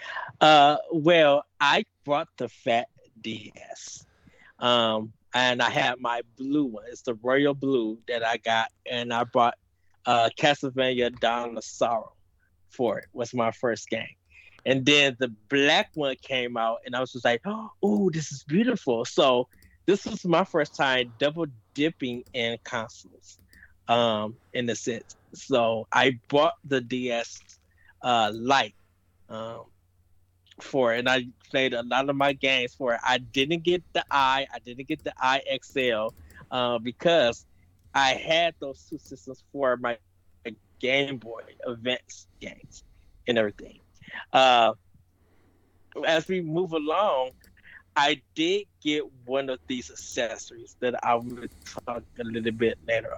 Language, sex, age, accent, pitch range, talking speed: English, male, 20-39, American, 110-140 Hz, 145 wpm